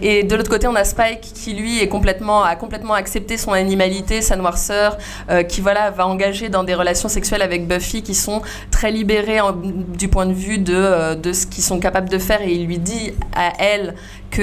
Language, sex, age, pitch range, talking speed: French, female, 20-39, 185-215 Hz, 215 wpm